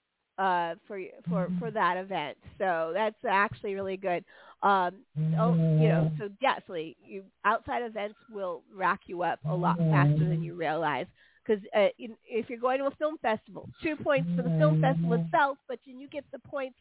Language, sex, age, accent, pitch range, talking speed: English, female, 40-59, American, 170-245 Hz, 190 wpm